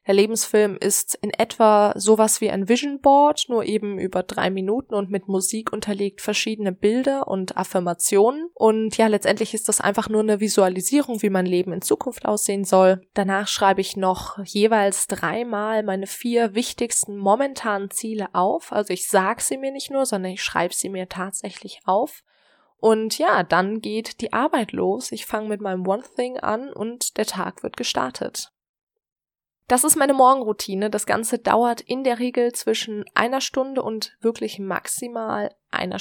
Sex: female